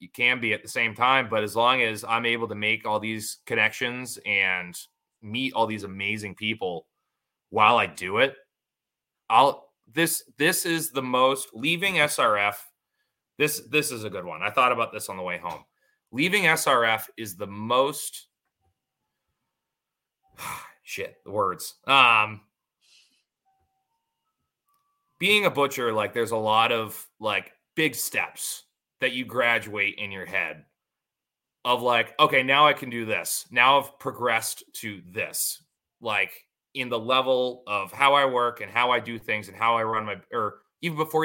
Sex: male